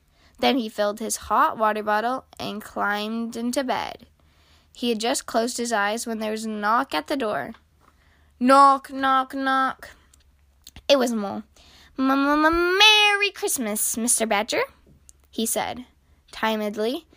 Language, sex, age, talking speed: English, female, 10-29, 135 wpm